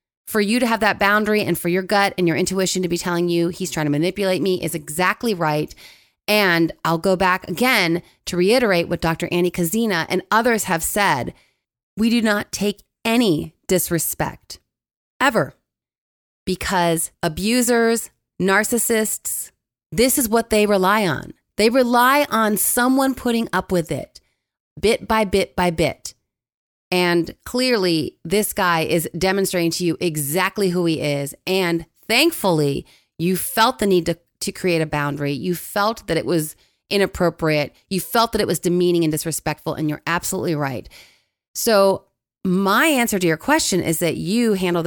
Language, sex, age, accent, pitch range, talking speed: English, female, 30-49, American, 165-205 Hz, 160 wpm